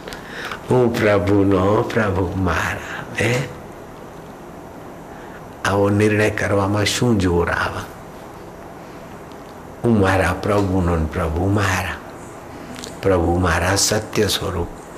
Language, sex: Hindi, male